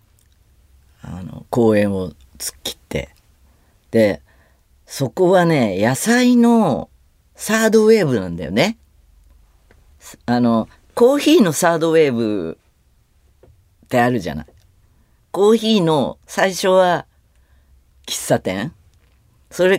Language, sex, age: Japanese, female, 40-59